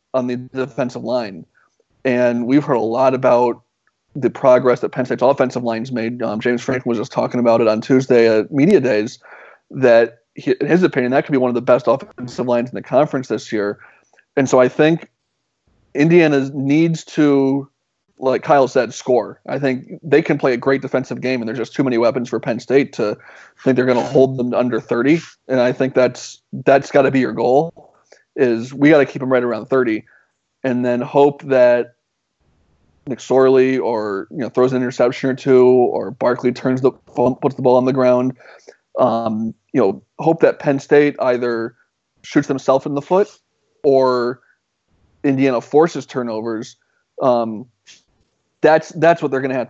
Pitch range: 120-140 Hz